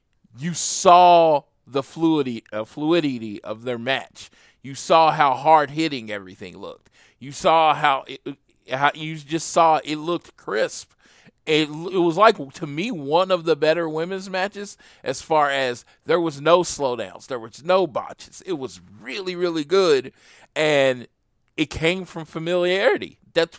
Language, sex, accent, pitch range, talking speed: English, male, American, 120-165 Hz, 155 wpm